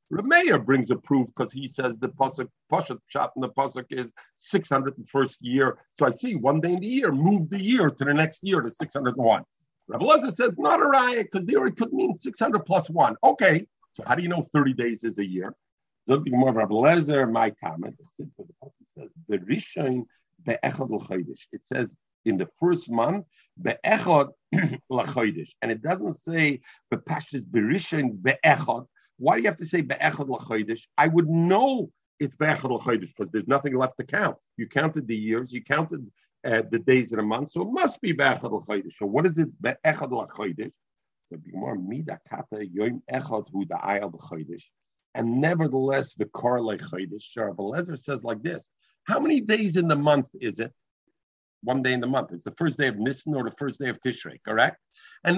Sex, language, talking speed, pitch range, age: male, English, 170 wpm, 120-180 Hz, 50-69